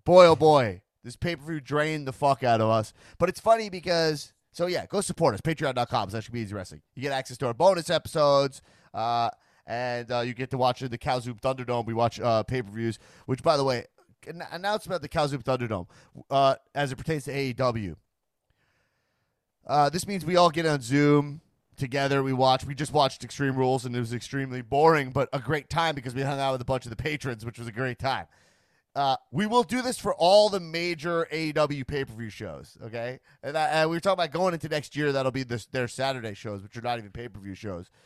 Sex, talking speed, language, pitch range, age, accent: male, 215 wpm, English, 120-160 Hz, 30-49, American